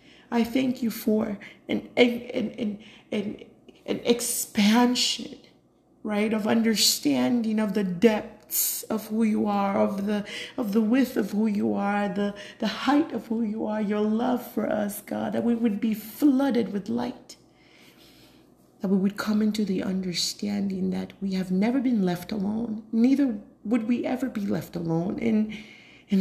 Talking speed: 165 wpm